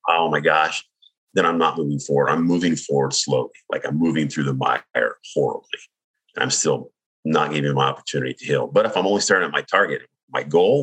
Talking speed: 205 wpm